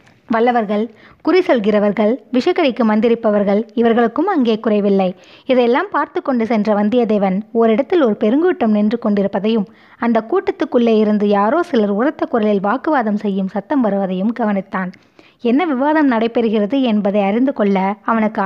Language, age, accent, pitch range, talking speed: Tamil, 20-39, native, 205-265 Hz, 120 wpm